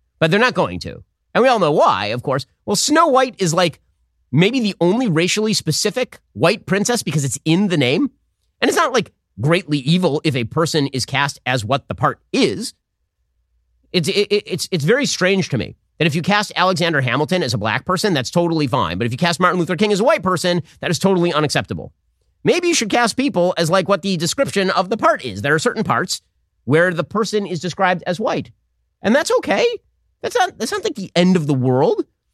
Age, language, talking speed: 30-49, English, 220 wpm